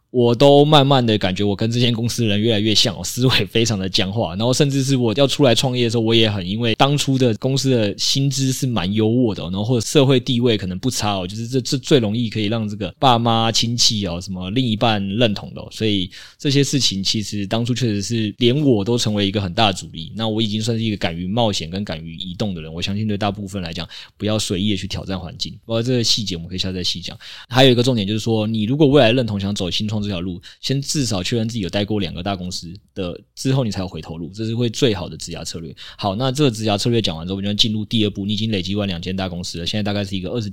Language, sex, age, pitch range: Chinese, male, 20-39, 100-120 Hz